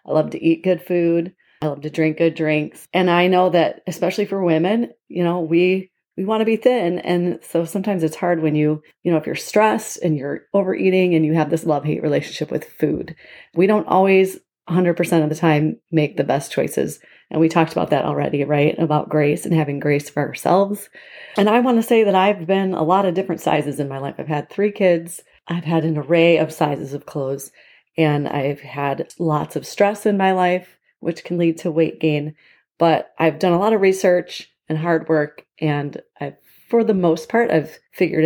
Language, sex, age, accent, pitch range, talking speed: English, female, 30-49, American, 155-185 Hz, 215 wpm